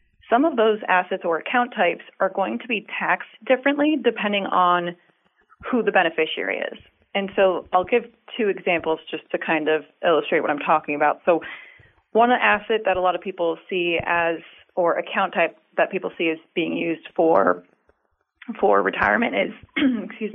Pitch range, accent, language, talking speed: 170-225 Hz, American, English, 170 wpm